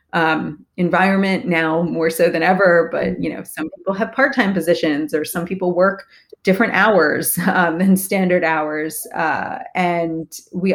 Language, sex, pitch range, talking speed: English, female, 165-200 Hz, 155 wpm